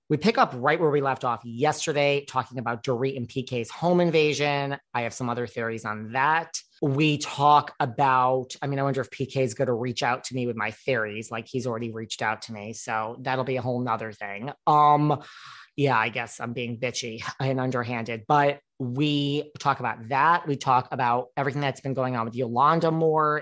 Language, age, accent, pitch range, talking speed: English, 30-49, American, 120-145 Hz, 210 wpm